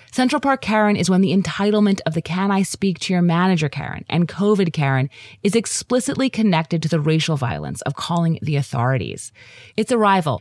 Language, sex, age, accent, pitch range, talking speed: English, female, 30-49, American, 135-195 Hz, 185 wpm